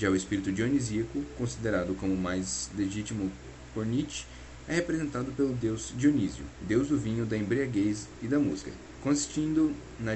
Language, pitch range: Portuguese, 90-125 Hz